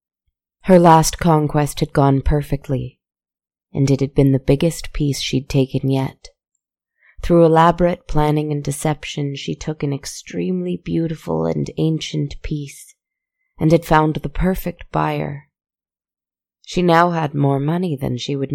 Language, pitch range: English, 125-155 Hz